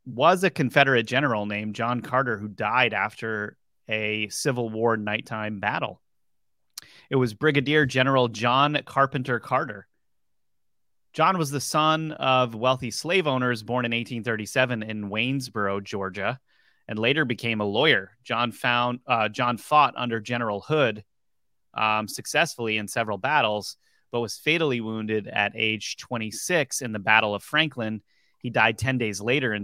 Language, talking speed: English, 145 wpm